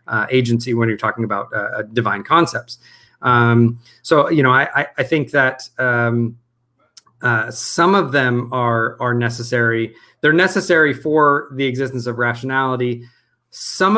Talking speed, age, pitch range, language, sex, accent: 145 wpm, 30-49, 115-135 Hz, English, male, American